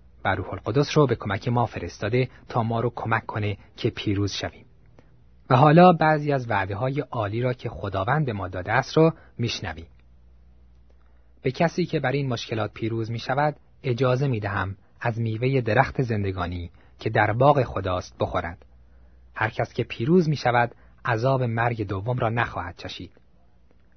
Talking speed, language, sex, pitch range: 155 wpm, Persian, male, 90-130 Hz